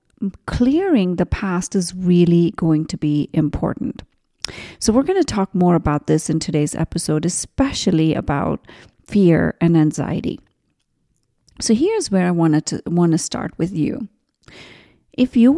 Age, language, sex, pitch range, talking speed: 30-49, English, female, 170-240 Hz, 145 wpm